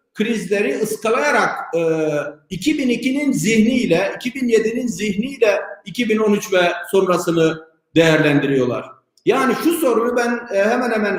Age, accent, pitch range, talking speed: 50-69, native, 180-215 Hz, 95 wpm